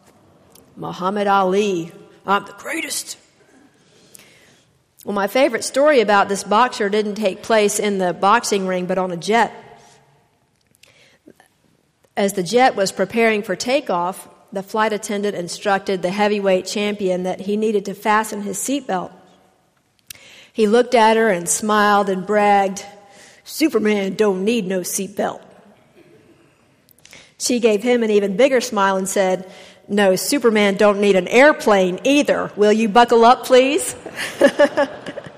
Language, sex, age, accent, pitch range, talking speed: English, female, 50-69, American, 190-225 Hz, 130 wpm